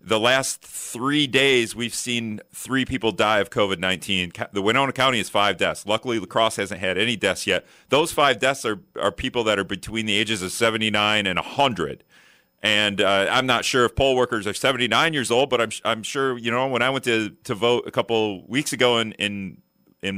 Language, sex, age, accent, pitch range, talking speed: English, male, 40-59, American, 105-125 Hz, 220 wpm